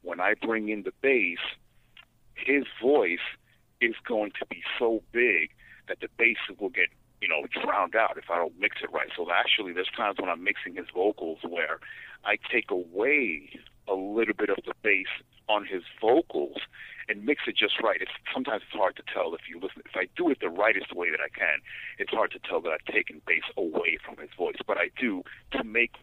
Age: 50-69